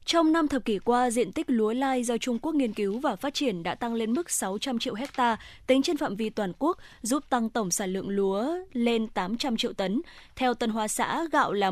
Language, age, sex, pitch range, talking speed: Vietnamese, 20-39, female, 215-265 Hz, 235 wpm